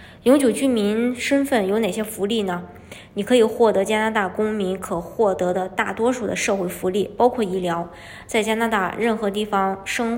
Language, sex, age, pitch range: Chinese, male, 20-39, 195-230 Hz